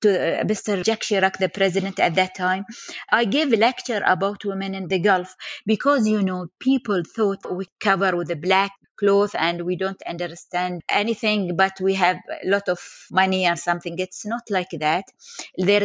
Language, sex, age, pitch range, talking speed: English, female, 30-49, 195-235 Hz, 180 wpm